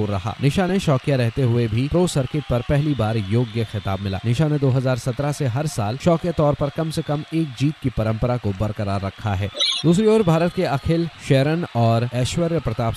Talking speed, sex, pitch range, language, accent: 205 wpm, male, 110-150 Hz, Hindi, native